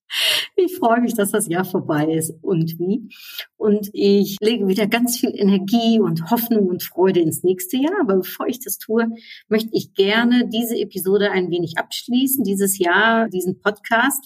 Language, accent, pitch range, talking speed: German, German, 185-230 Hz, 175 wpm